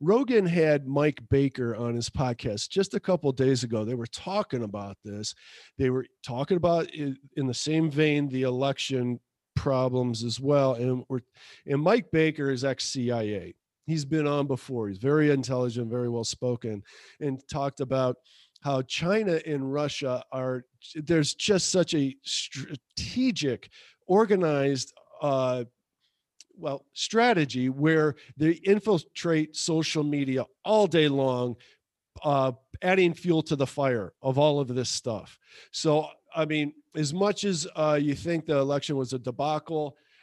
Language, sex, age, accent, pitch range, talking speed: English, male, 50-69, American, 130-155 Hz, 145 wpm